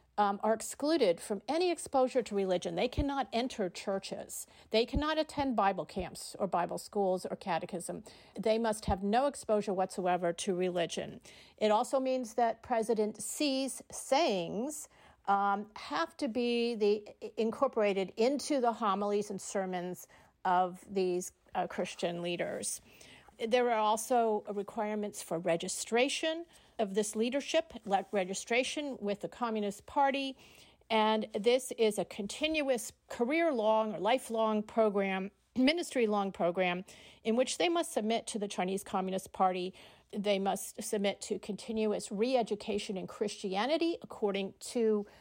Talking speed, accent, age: 130 wpm, American, 50-69